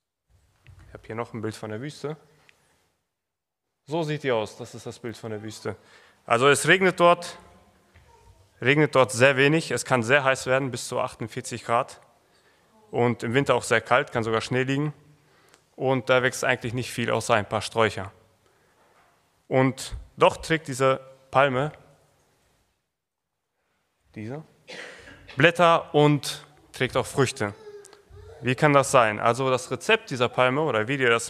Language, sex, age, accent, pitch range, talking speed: German, male, 30-49, German, 115-150 Hz, 155 wpm